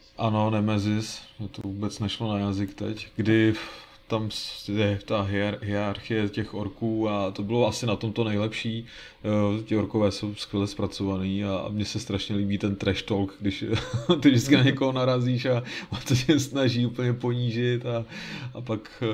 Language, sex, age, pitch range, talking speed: Czech, male, 20-39, 100-115 Hz, 165 wpm